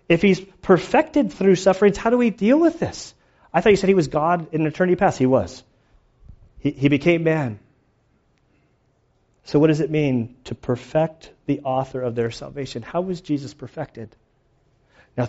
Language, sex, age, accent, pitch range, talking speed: English, male, 40-59, American, 120-145 Hz, 175 wpm